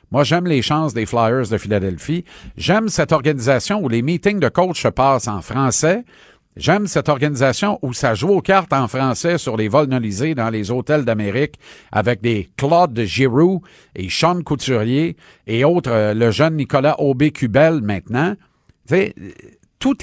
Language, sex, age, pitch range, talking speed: French, male, 50-69, 110-150 Hz, 160 wpm